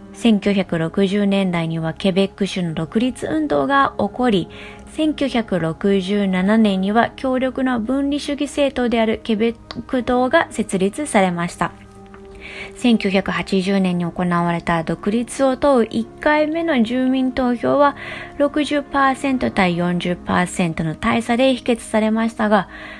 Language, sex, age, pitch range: English, female, 20-39, 180-240 Hz